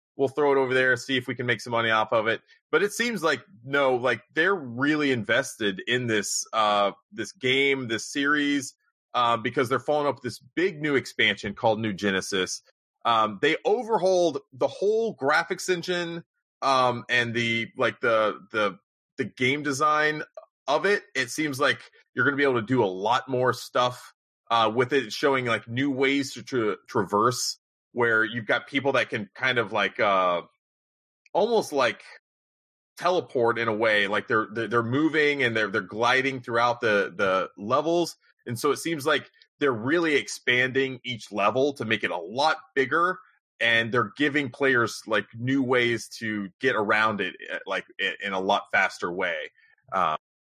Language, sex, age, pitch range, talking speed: English, male, 30-49, 115-150 Hz, 175 wpm